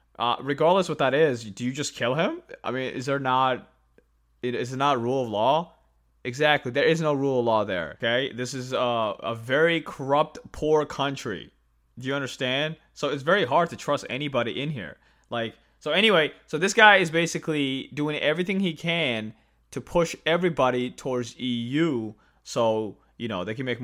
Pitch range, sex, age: 120-170 Hz, male, 20-39